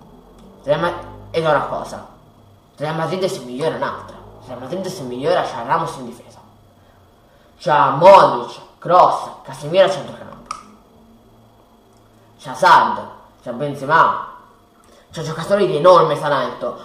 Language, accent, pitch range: Italian, native, 145-190 Hz